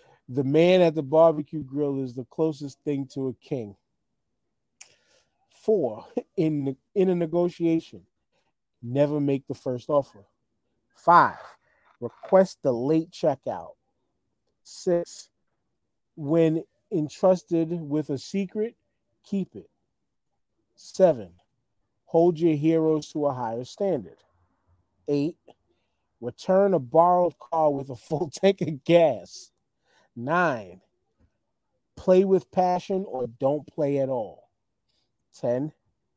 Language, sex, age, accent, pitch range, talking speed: English, male, 40-59, American, 130-170 Hz, 110 wpm